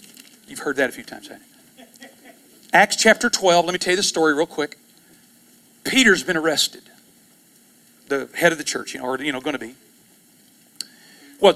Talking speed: 185 wpm